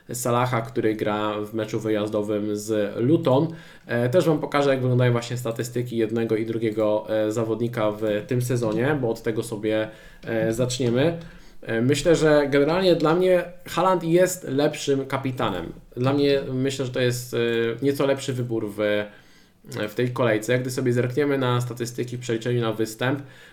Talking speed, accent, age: 145 wpm, native, 20-39